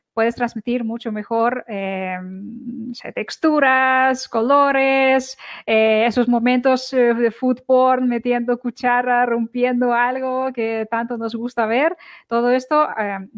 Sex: female